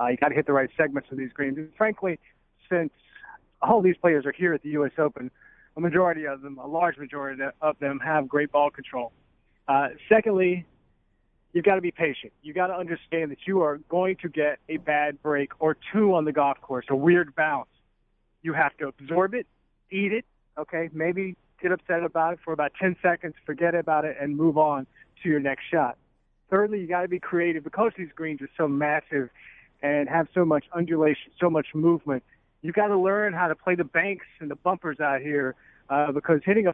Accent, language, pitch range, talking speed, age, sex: American, English, 145-185 Hz, 210 wpm, 40-59, male